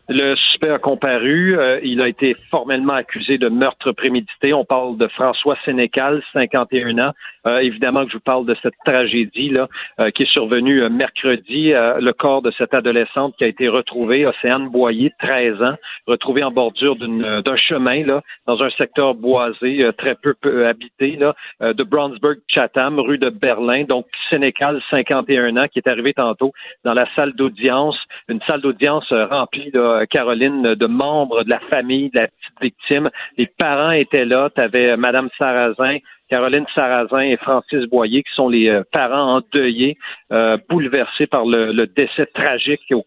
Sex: male